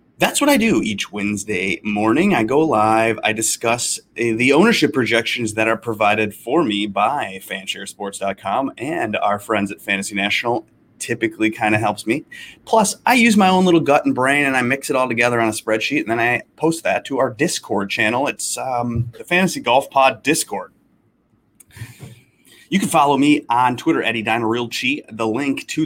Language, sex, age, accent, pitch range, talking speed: English, male, 30-49, American, 110-145 Hz, 190 wpm